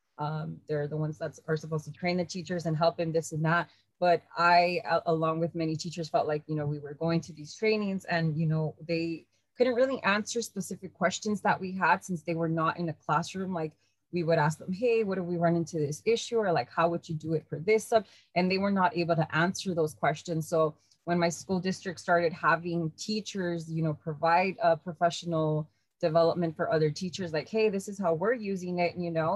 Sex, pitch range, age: female, 160-185 Hz, 20-39